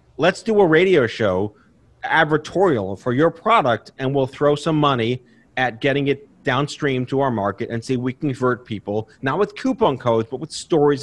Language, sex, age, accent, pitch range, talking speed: English, male, 30-49, American, 120-165 Hz, 180 wpm